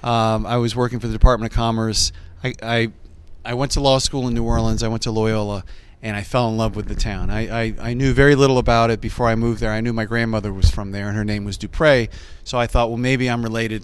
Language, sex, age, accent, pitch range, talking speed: English, male, 40-59, American, 110-125 Hz, 270 wpm